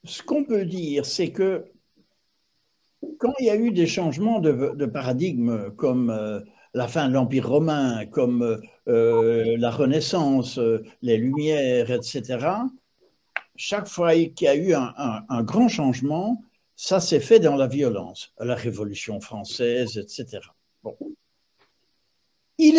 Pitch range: 140-230 Hz